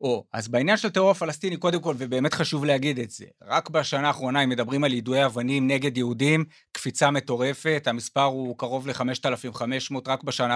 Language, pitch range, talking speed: Hebrew, 130-155 Hz, 175 wpm